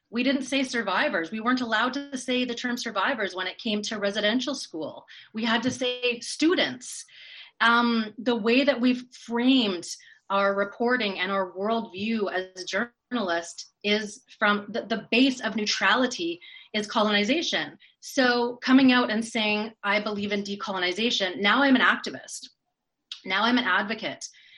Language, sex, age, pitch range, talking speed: English, female, 30-49, 200-245 Hz, 150 wpm